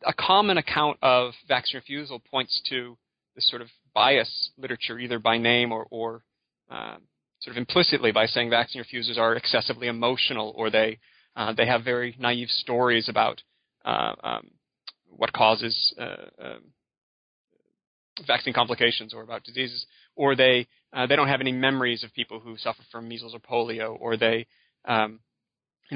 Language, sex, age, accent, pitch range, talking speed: English, male, 30-49, American, 115-130 Hz, 160 wpm